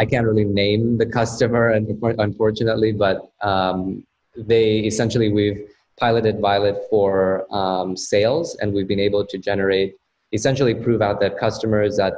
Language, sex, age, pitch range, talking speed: English, male, 20-39, 95-110 Hz, 150 wpm